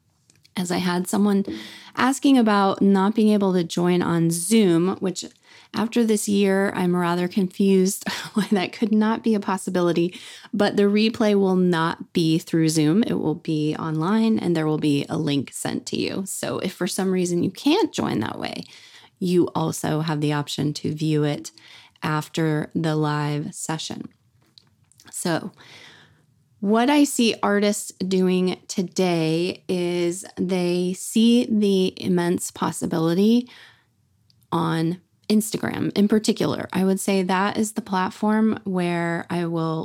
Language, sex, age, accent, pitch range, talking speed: English, female, 20-39, American, 160-200 Hz, 145 wpm